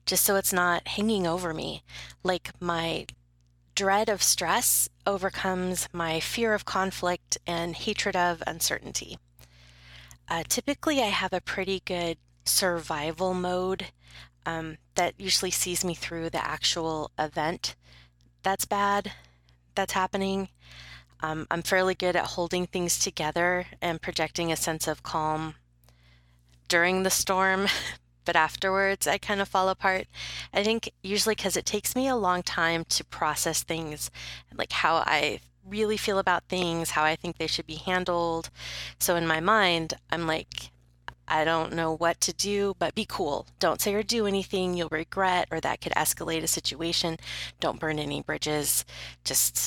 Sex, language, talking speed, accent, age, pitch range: female, English, 155 wpm, American, 20-39, 120-185 Hz